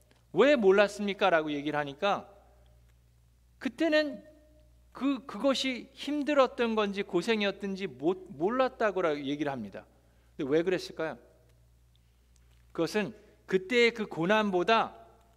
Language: Korean